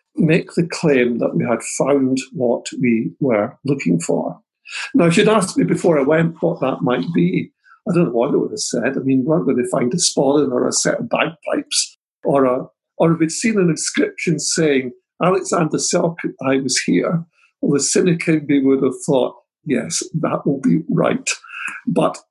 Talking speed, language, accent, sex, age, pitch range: 195 wpm, English, British, male, 50-69, 130-175 Hz